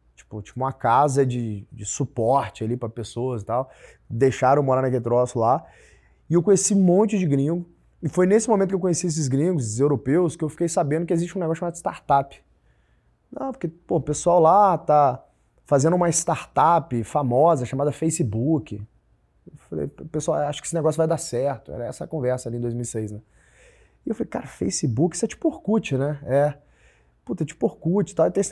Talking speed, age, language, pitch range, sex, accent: 200 wpm, 20-39, Portuguese, 120-175 Hz, male, Brazilian